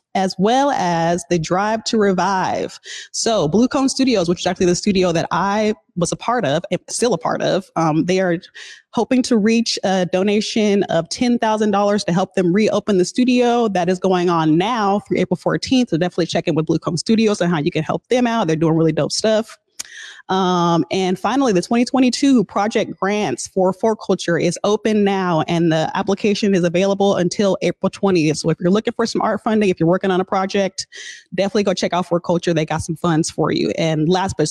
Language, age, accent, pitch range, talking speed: English, 30-49, American, 175-220 Hz, 205 wpm